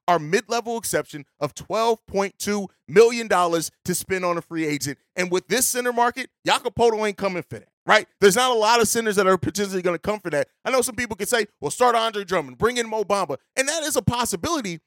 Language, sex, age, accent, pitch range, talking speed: English, male, 30-49, American, 175-230 Hz, 225 wpm